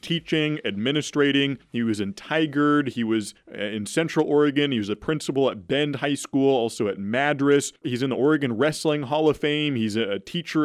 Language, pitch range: English, 120-150 Hz